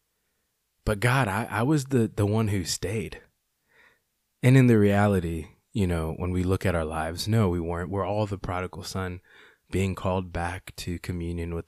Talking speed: 185 wpm